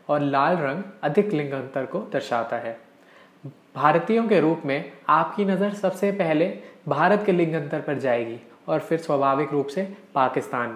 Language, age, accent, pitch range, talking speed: Hindi, 20-39, native, 130-170 Hz, 160 wpm